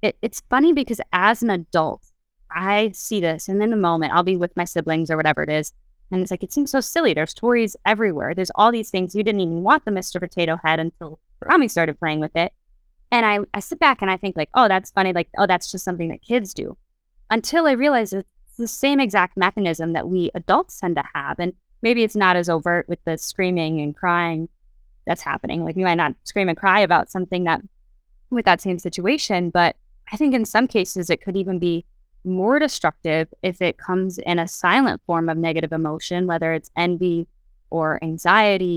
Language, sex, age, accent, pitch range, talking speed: English, female, 20-39, American, 165-205 Hz, 215 wpm